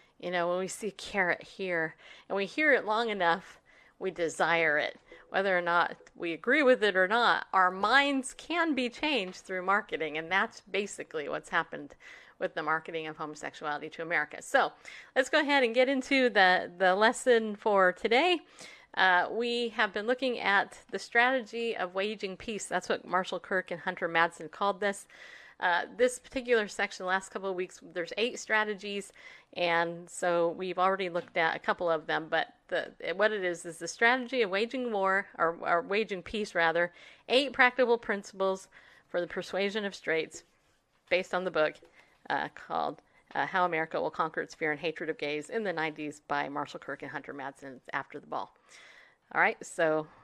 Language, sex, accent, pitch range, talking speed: English, female, American, 170-225 Hz, 185 wpm